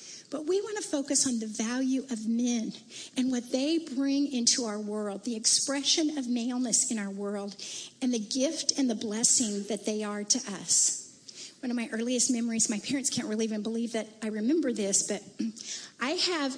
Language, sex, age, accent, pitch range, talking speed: English, female, 50-69, American, 225-280 Hz, 190 wpm